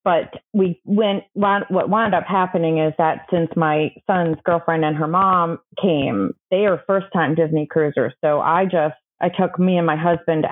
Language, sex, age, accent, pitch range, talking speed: English, female, 30-49, American, 160-195 Hz, 185 wpm